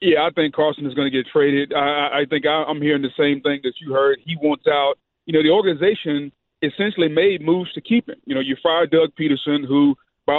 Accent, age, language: American, 40-59, English